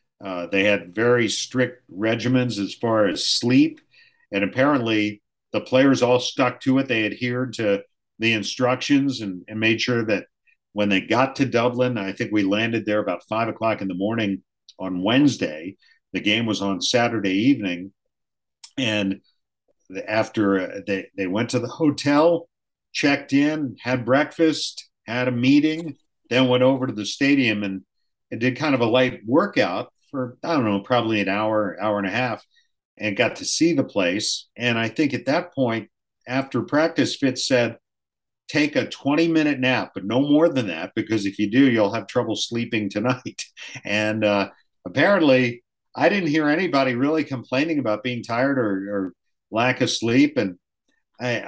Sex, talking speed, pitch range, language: male, 170 wpm, 105-135 Hz, English